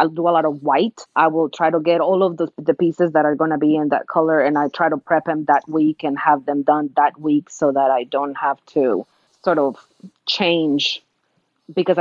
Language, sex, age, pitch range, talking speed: English, female, 30-49, 145-165 Hz, 240 wpm